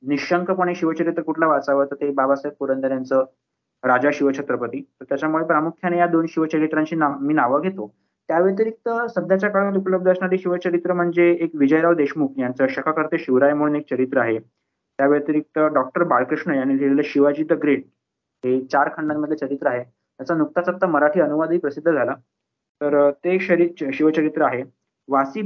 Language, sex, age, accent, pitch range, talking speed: Marathi, male, 20-39, native, 135-175 Hz, 150 wpm